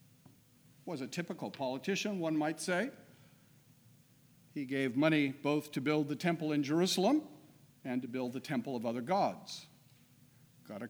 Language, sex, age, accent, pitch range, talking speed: English, male, 50-69, American, 135-170 Hz, 145 wpm